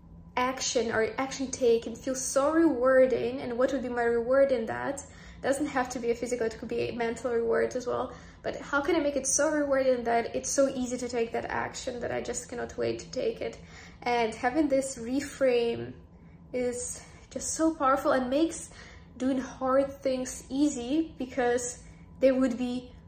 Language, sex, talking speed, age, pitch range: English, female, 185 wpm, 20-39, 240-285 Hz